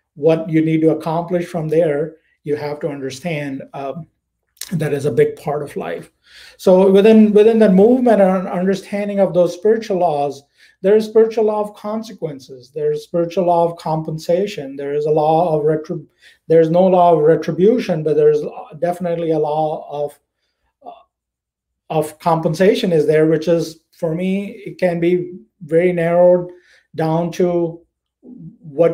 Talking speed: 160 wpm